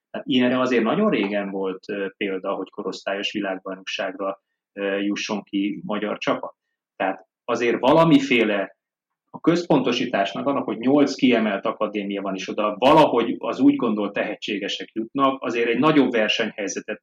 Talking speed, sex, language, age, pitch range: 125 wpm, male, Hungarian, 30-49, 110-155 Hz